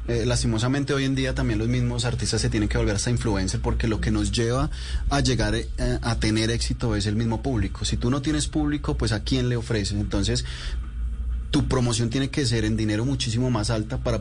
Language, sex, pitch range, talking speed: Spanish, male, 100-125 Hz, 220 wpm